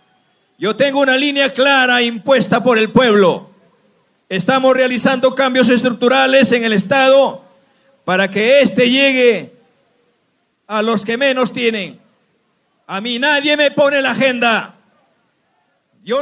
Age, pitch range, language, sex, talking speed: 50-69, 220-270 Hz, Spanish, male, 120 wpm